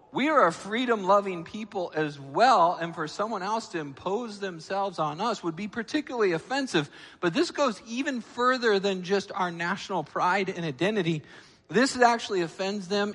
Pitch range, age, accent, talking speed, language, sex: 150-195 Hz, 40-59, American, 165 wpm, English, male